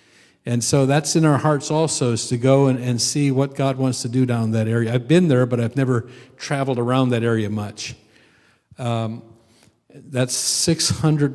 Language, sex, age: English, male, 50-69